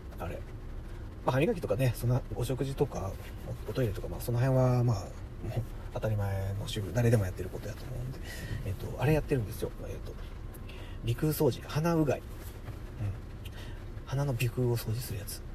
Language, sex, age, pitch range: Japanese, male, 40-59, 105-125 Hz